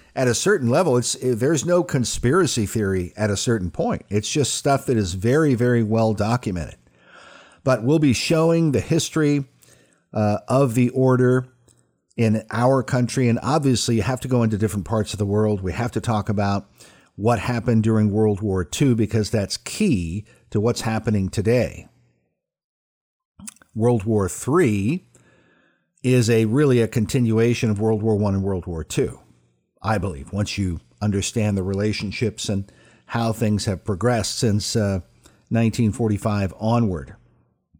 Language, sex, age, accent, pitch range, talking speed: English, male, 50-69, American, 105-130 Hz, 155 wpm